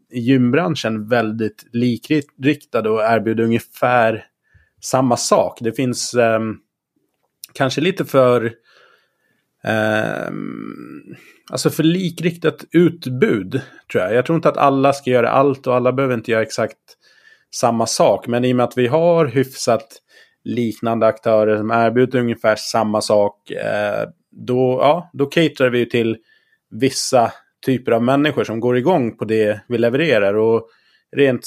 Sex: male